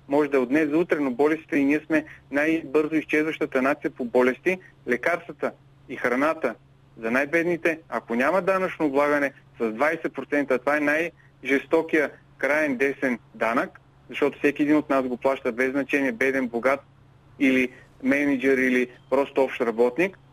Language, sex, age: Bulgarian, male, 40-59